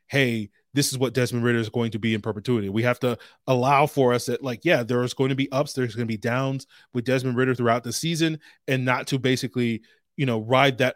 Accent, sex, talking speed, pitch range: American, male, 250 wpm, 115-140 Hz